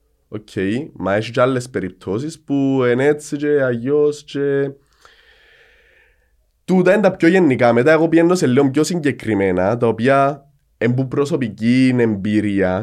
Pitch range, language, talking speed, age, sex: 100-150 Hz, Greek, 140 wpm, 20-39, male